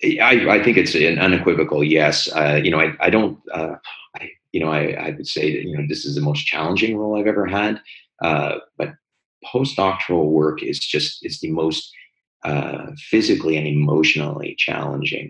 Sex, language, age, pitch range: male, English, 30-49, 70-80 Hz